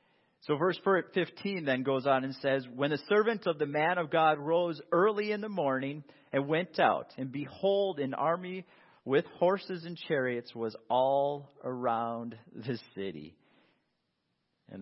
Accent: American